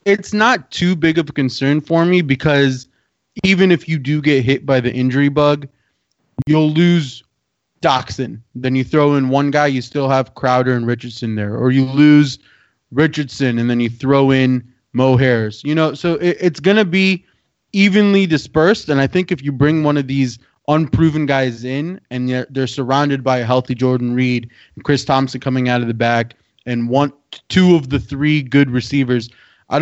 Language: English